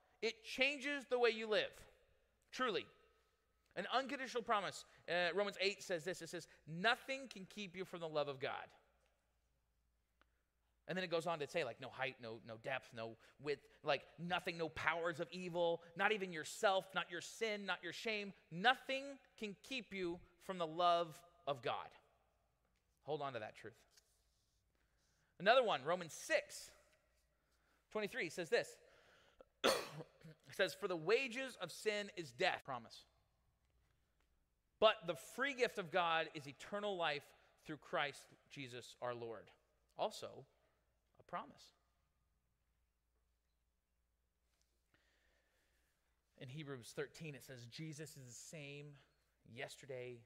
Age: 30-49